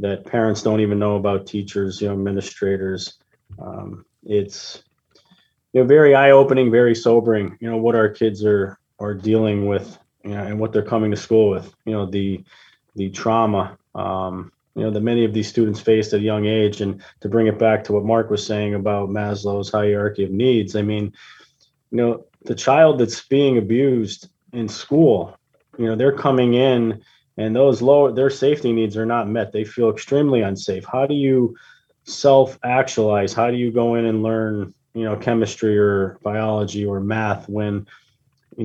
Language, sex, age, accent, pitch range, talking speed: English, male, 20-39, American, 105-120 Hz, 185 wpm